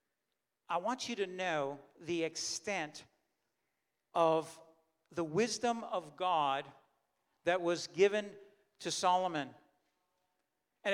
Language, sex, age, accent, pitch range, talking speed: English, male, 50-69, American, 160-210 Hz, 100 wpm